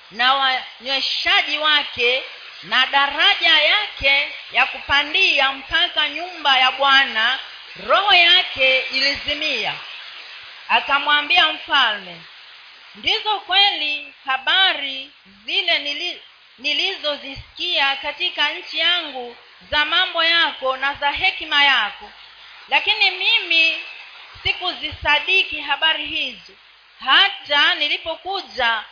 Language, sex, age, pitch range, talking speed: Swahili, female, 40-59, 265-345 Hz, 85 wpm